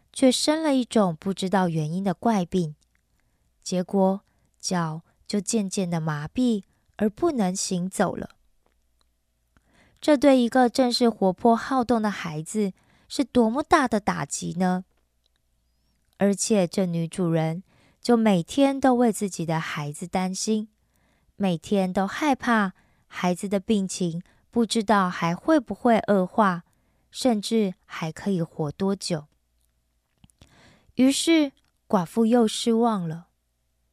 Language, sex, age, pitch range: Korean, female, 20-39, 165-220 Hz